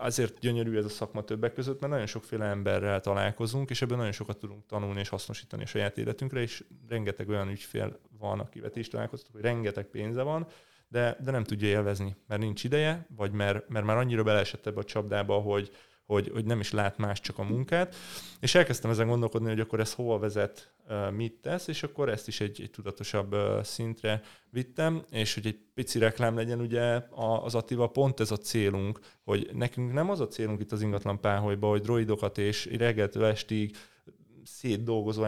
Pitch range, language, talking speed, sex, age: 105-125 Hz, Hungarian, 190 wpm, male, 30-49